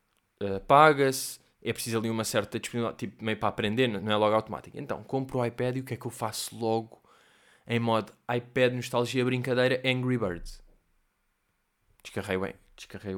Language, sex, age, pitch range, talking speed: Portuguese, male, 20-39, 110-140 Hz, 160 wpm